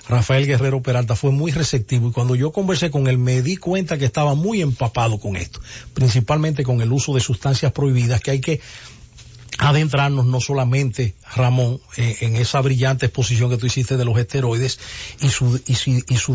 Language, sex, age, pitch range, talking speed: English, male, 40-59, 125-145 Hz, 190 wpm